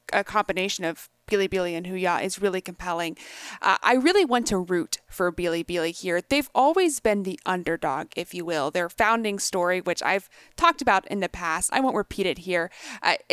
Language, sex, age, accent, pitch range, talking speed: English, female, 30-49, American, 180-225 Hz, 190 wpm